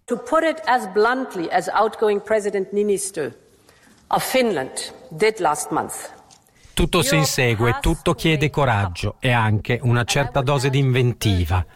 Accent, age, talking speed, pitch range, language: native, 50-69, 140 wpm, 115-155 Hz, Italian